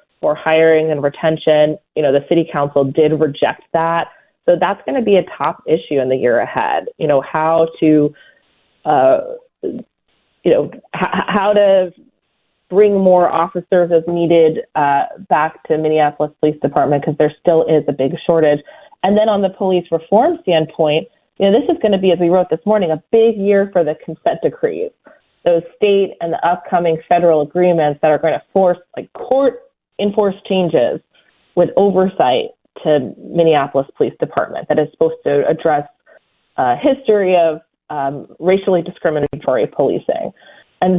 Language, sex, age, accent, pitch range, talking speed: English, female, 30-49, American, 155-200 Hz, 160 wpm